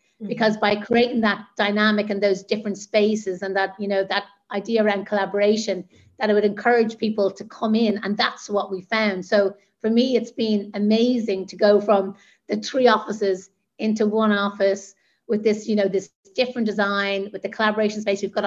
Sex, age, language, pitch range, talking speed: female, 40-59, English, 200-225 Hz, 190 wpm